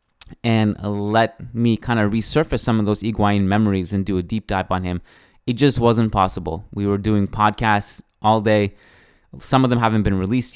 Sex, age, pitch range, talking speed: male, 20-39, 95-115 Hz, 195 wpm